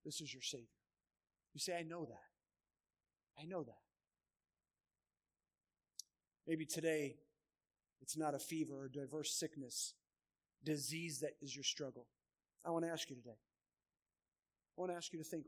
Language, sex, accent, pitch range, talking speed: English, male, American, 105-160 Hz, 150 wpm